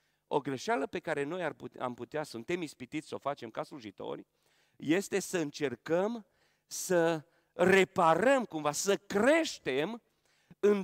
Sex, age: male, 40-59